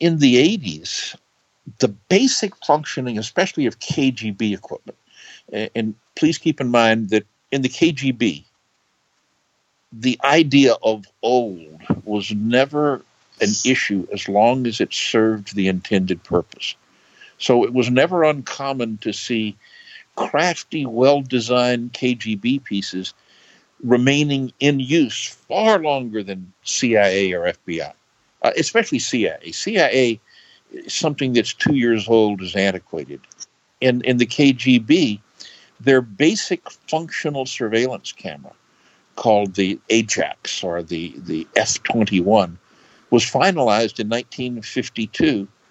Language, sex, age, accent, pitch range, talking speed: English, male, 60-79, American, 110-150 Hz, 115 wpm